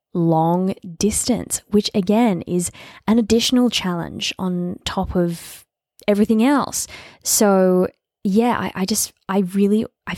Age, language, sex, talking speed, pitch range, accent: 20-39, English, female, 125 wpm, 170-210 Hz, Australian